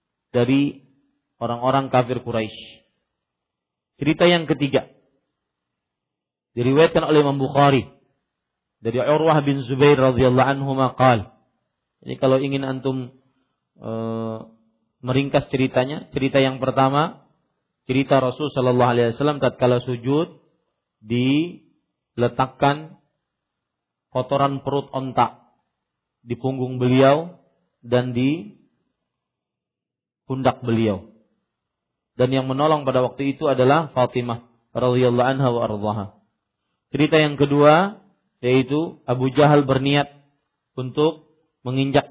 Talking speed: 90 wpm